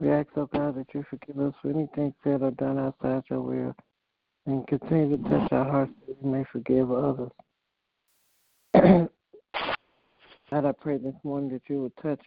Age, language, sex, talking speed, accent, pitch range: 60-79, English, male, 180 wpm, American, 130-145 Hz